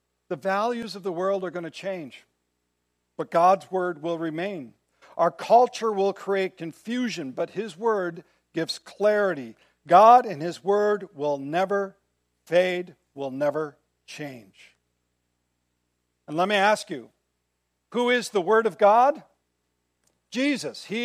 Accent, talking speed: American, 135 wpm